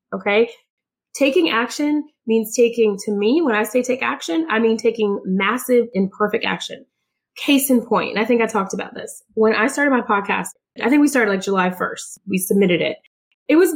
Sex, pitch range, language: female, 205-260 Hz, English